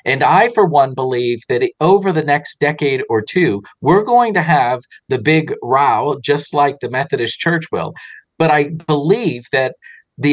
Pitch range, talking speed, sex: 125-155 Hz, 175 wpm, male